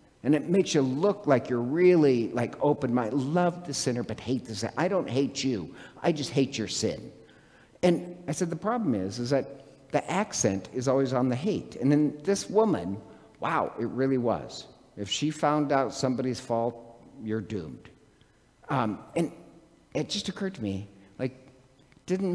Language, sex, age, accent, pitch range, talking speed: English, male, 50-69, American, 115-150 Hz, 175 wpm